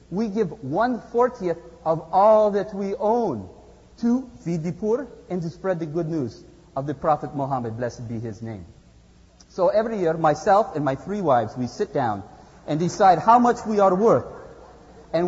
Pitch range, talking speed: 160-230 Hz, 175 wpm